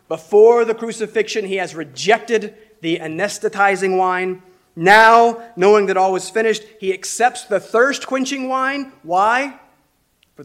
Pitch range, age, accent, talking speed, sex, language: 145-215 Hz, 30-49, American, 125 wpm, male, English